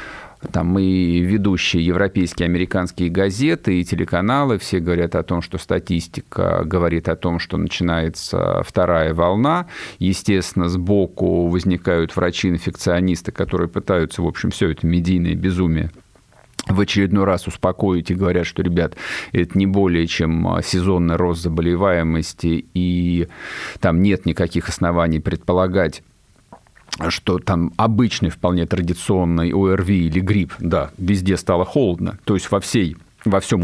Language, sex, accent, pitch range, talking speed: Russian, male, native, 85-100 Hz, 130 wpm